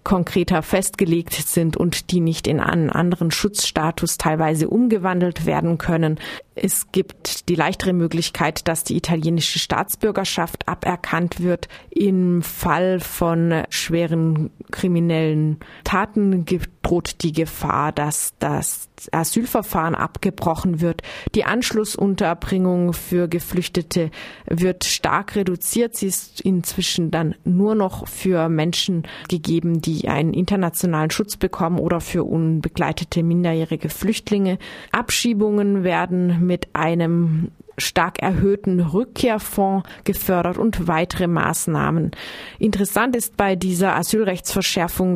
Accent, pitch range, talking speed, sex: German, 165-195 Hz, 110 wpm, female